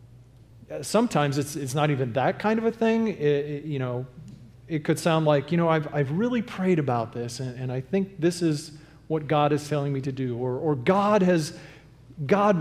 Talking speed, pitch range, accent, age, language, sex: 210 wpm, 125-175 Hz, American, 40-59, English, male